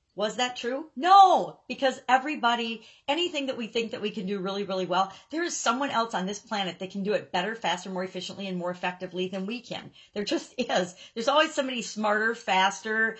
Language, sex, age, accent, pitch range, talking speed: English, female, 50-69, American, 180-230 Hz, 210 wpm